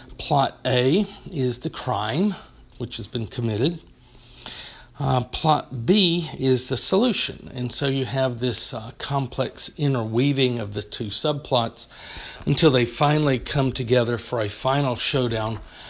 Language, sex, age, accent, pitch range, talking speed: English, male, 50-69, American, 115-145 Hz, 135 wpm